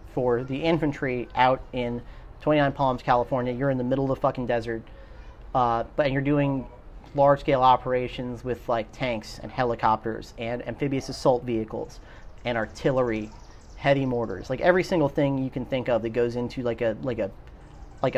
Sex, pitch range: male, 120-145 Hz